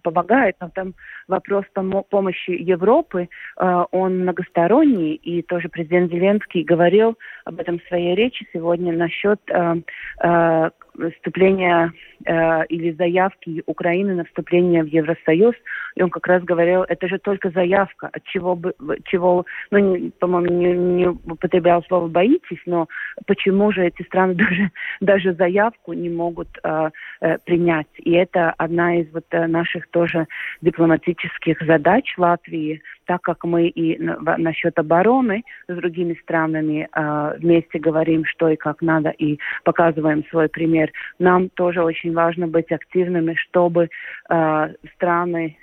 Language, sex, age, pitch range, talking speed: Russian, female, 30-49, 165-180 Hz, 130 wpm